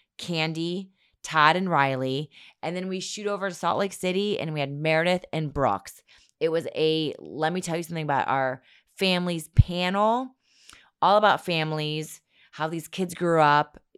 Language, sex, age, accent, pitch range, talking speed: English, female, 20-39, American, 145-175 Hz, 165 wpm